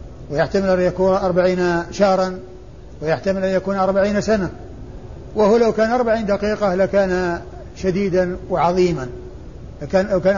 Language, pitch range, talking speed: Arabic, 175-205 Hz, 120 wpm